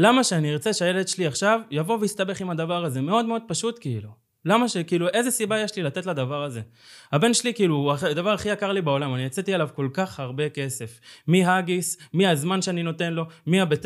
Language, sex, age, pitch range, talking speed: Hebrew, male, 20-39, 155-225 Hz, 205 wpm